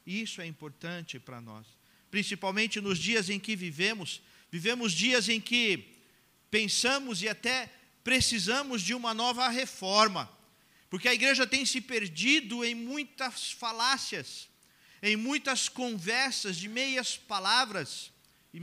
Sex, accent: male, Brazilian